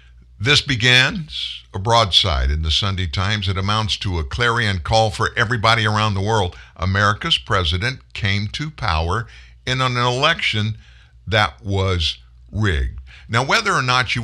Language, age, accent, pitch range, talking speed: English, 60-79, American, 70-115 Hz, 150 wpm